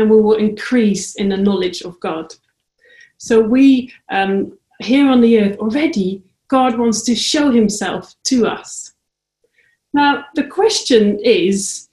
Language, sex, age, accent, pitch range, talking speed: English, female, 40-59, British, 205-255 Hz, 135 wpm